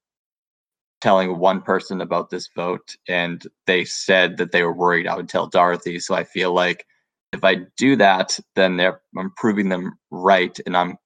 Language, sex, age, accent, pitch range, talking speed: English, male, 20-39, American, 95-110 Hz, 180 wpm